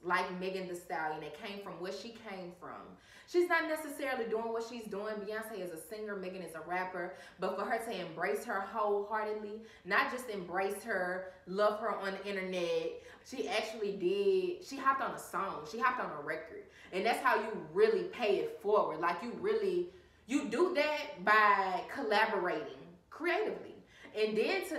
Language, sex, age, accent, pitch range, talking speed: English, female, 20-39, American, 180-235 Hz, 180 wpm